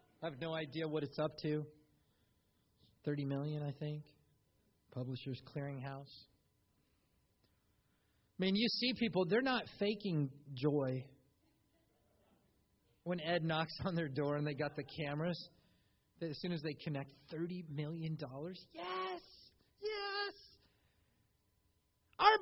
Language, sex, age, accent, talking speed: English, male, 40-59, American, 120 wpm